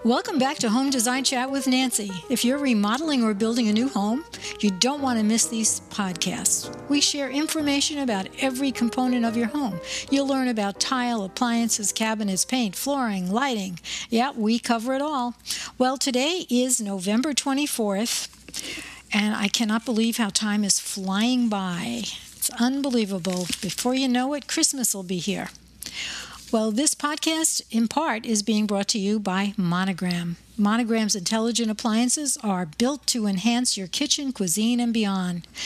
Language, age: English, 60-79